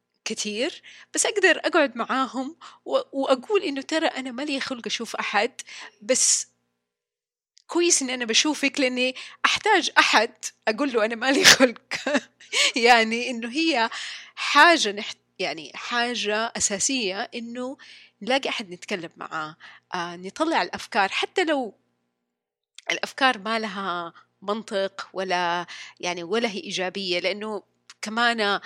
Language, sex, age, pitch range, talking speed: Arabic, female, 30-49, 190-280 Hz, 110 wpm